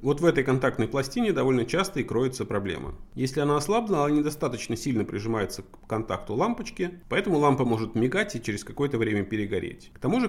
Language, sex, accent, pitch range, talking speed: Russian, male, native, 110-150 Hz, 185 wpm